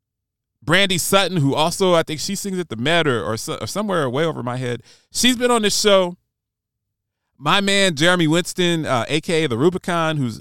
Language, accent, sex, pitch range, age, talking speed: English, American, male, 115-160 Hz, 30-49, 190 wpm